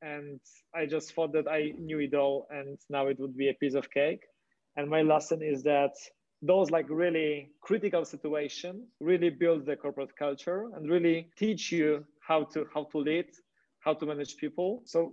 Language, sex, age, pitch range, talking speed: English, male, 30-49, 155-180 Hz, 185 wpm